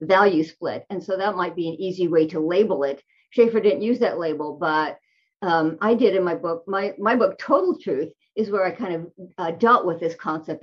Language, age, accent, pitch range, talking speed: English, 50-69, American, 175-245 Hz, 225 wpm